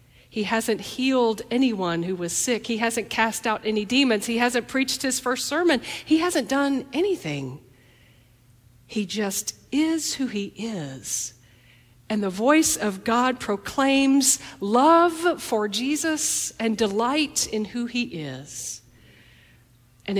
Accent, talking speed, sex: American, 135 wpm, female